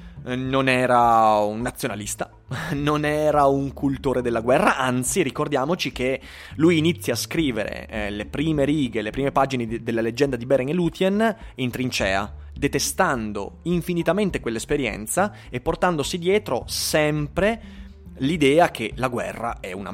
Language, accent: Italian, native